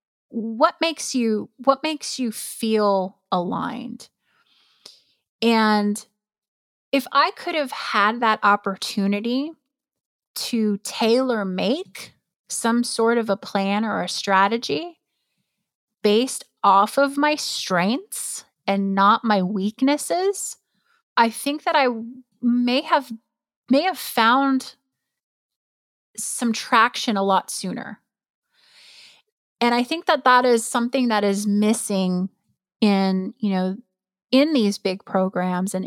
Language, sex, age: English, female, 30-49